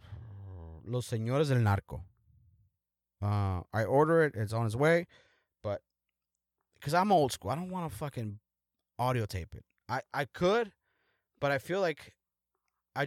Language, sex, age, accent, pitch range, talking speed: English, male, 30-49, American, 95-155 Hz, 145 wpm